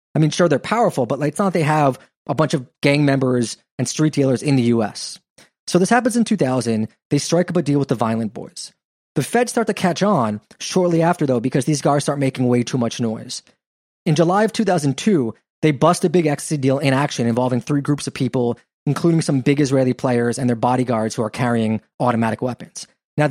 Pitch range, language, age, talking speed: 130-170 Hz, English, 20-39, 215 wpm